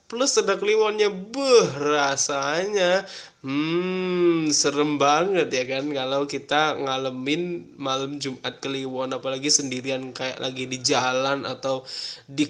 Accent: native